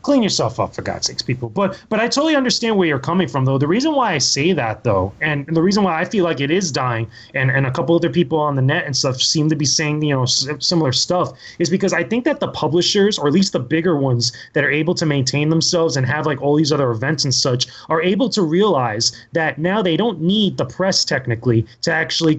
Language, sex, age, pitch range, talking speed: English, male, 20-39, 135-175 Hz, 255 wpm